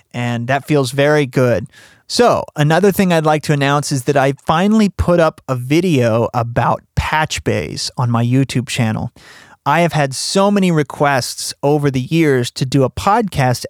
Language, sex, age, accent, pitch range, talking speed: English, male, 30-49, American, 130-155 Hz, 170 wpm